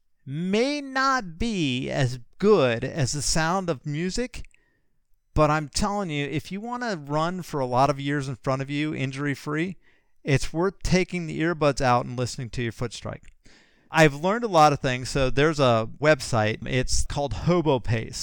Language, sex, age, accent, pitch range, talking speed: English, male, 50-69, American, 125-155 Hz, 180 wpm